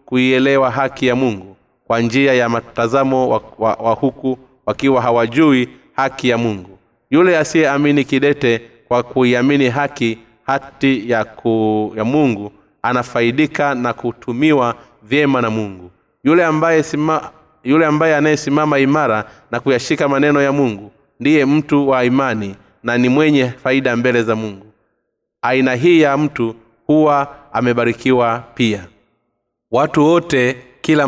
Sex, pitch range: male, 115-140 Hz